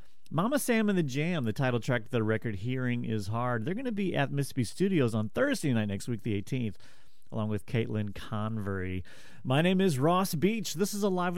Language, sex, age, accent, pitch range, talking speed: English, male, 30-49, American, 110-175 Hz, 210 wpm